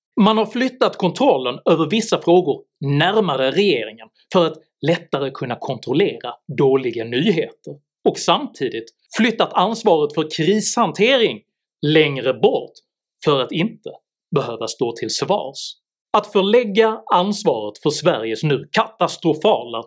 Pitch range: 150-220 Hz